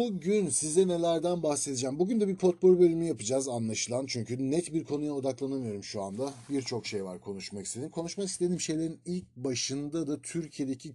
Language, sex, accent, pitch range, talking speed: Turkish, male, native, 115-150 Hz, 165 wpm